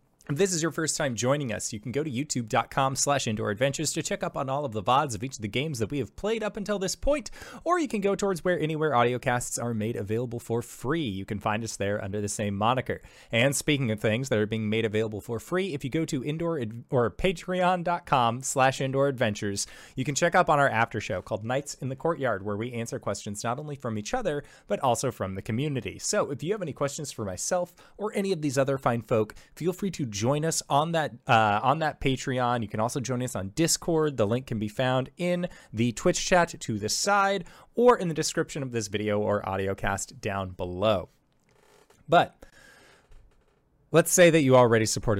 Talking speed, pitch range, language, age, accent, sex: 225 wpm, 110-155 Hz, English, 20-39, American, male